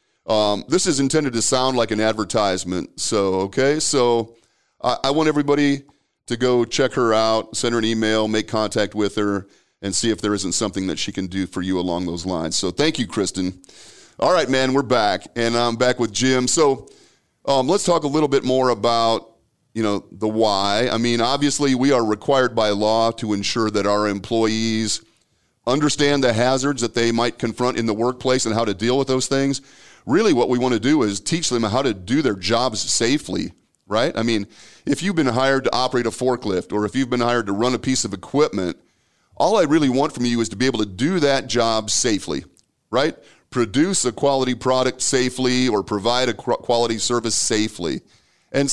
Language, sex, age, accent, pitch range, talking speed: English, male, 40-59, American, 110-135 Hz, 205 wpm